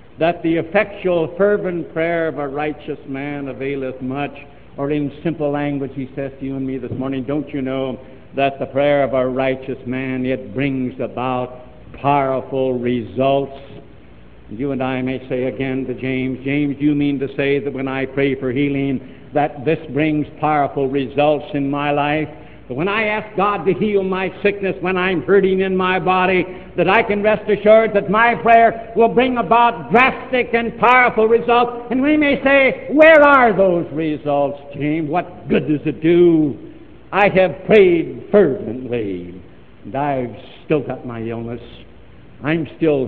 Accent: American